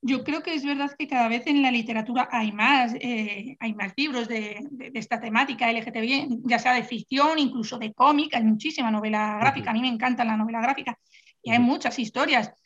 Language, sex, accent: Spanish, female, Spanish